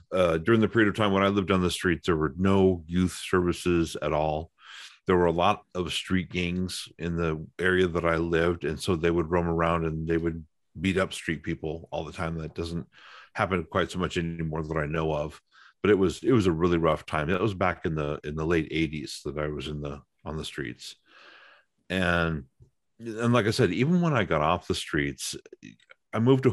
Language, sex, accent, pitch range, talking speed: English, male, American, 80-100 Hz, 225 wpm